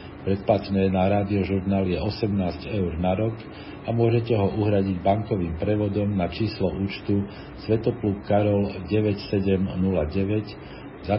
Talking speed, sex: 115 wpm, male